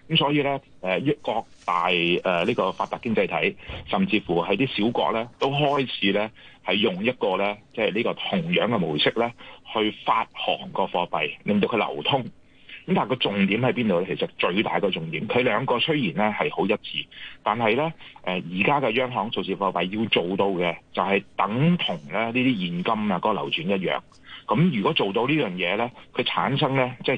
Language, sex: Chinese, male